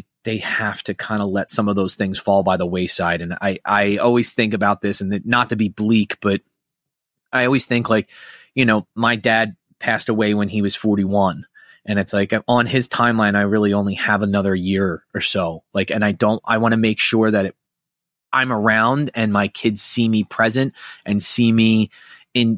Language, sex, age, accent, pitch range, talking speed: English, male, 30-49, American, 100-125 Hz, 210 wpm